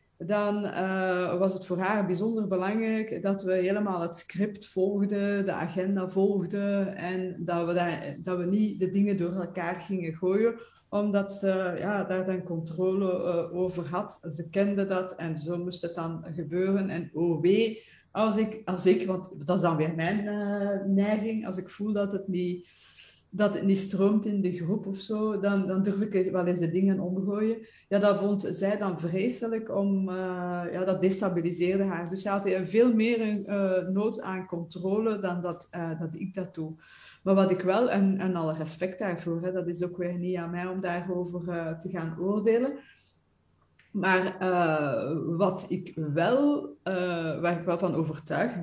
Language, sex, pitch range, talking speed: English, female, 175-200 Hz, 180 wpm